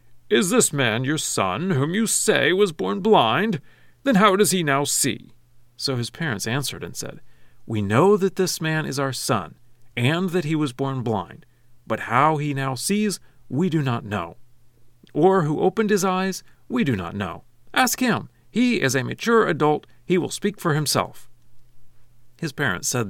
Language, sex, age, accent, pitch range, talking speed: English, male, 40-59, American, 120-175 Hz, 180 wpm